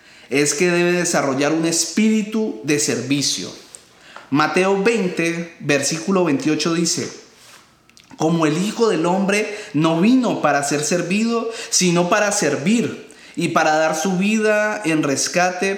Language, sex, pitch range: Spanish, male, 145-185 Hz